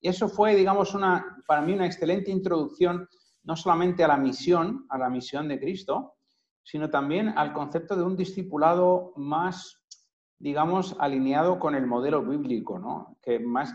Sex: male